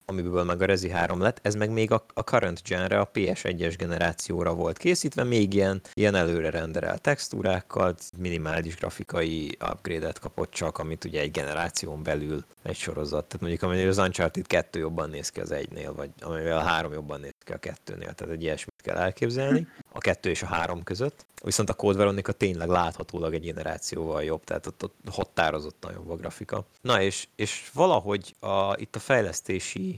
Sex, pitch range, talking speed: male, 85-100 Hz, 180 wpm